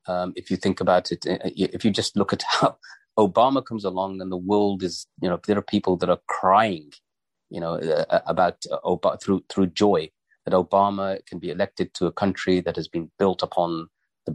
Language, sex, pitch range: English, male, 90-100 Hz